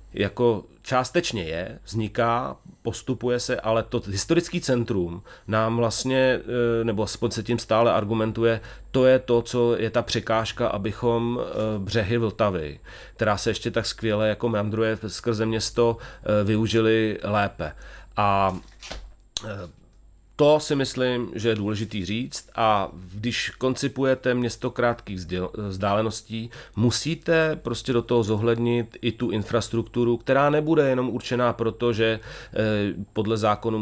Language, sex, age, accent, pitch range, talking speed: Czech, male, 30-49, native, 105-120 Hz, 120 wpm